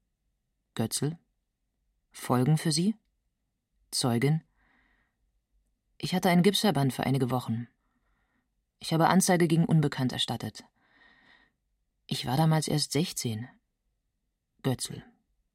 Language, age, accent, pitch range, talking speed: German, 30-49, German, 130-165 Hz, 95 wpm